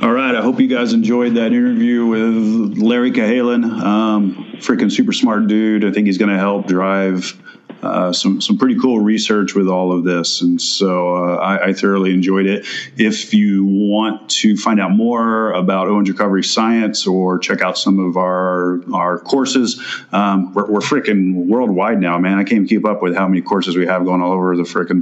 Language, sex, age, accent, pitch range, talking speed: English, male, 30-49, American, 95-110 Hz, 200 wpm